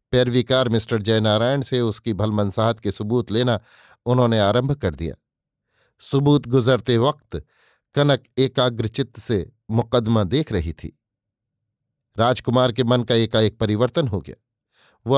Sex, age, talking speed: male, 50-69, 125 wpm